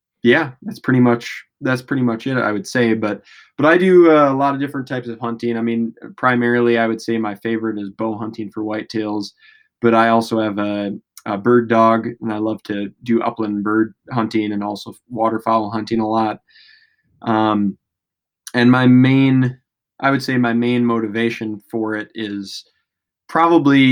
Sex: male